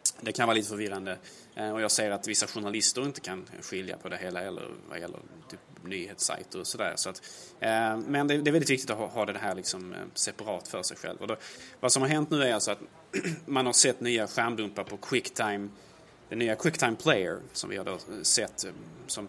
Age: 20-39